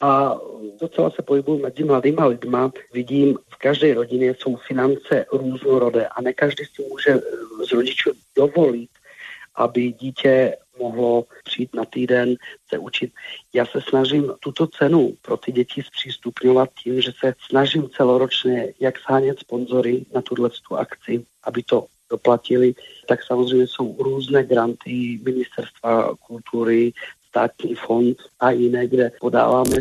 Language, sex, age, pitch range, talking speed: Czech, male, 50-69, 120-135 Hz, 135 wpm